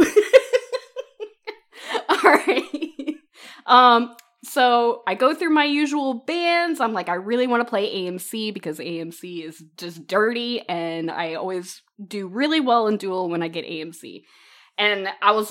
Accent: American